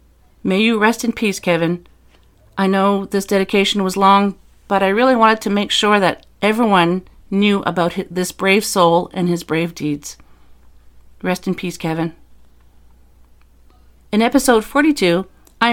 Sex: female